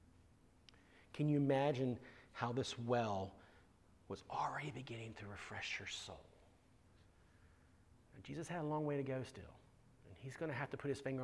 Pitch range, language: 95-150 Hz, English